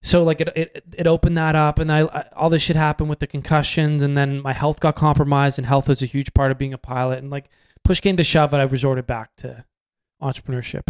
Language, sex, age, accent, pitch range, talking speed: English, male, 20-39, American, 135-155 Hz, 255 wpm